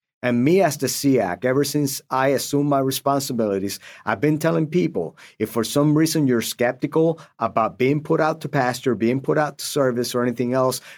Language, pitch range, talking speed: English, 120-145 Hz, 190 wpm